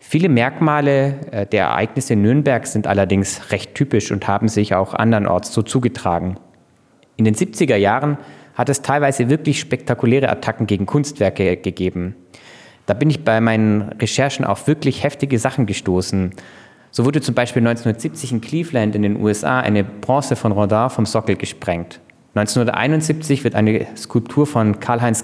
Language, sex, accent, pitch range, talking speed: German, male, German, 100-125 Hz, 150 wpm